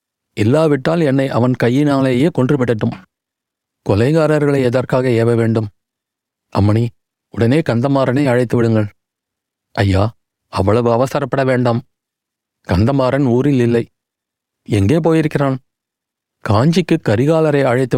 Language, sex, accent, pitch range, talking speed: Tamil, male, native, 115-145 Hz, 85 wpm